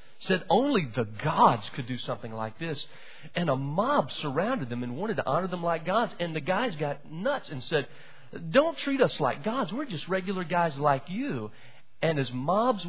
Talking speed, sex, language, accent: 195 wpm, male, English, American